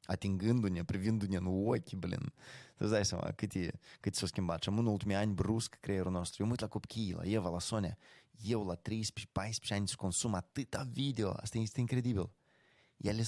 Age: 20-39